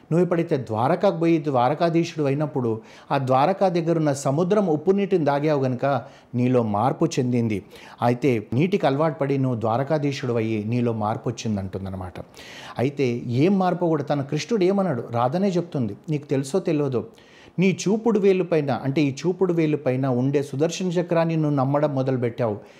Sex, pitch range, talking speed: male, 125-160 Hz, 130 wpm